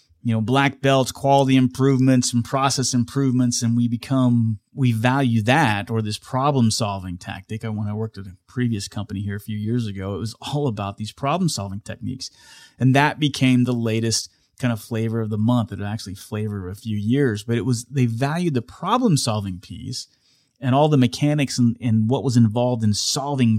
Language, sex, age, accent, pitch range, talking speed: English, male, 30-49, American, 105-130 Hz, 200 wpm